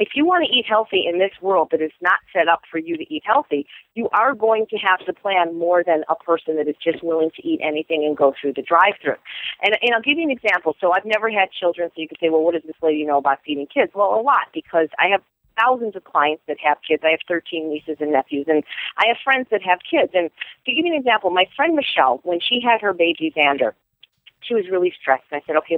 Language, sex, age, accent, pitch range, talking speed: English, female, 40-59, American, 155-230 Hz, 270 wpm